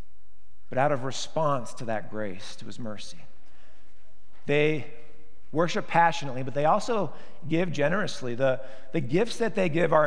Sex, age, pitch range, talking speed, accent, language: male, 50-69, 145-180 Hz, 150 wpm, American, English